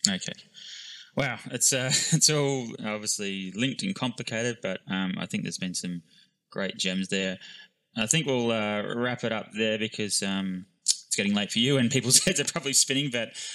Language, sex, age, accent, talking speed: English, male, 20-39, Australian, 185 wpm